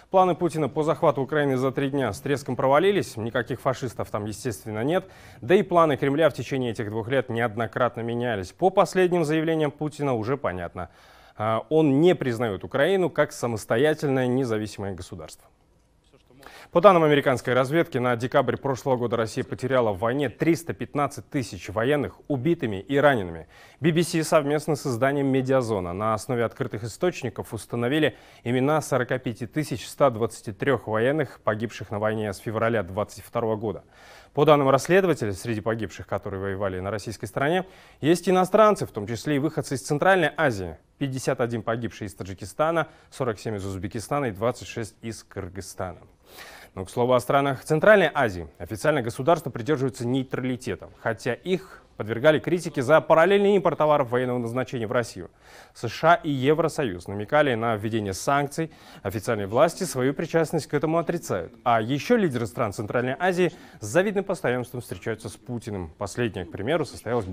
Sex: male